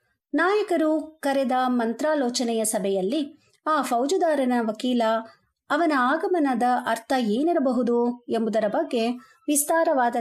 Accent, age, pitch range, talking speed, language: native, 50-69, 220-295 Hz, 80 wpm, Kannada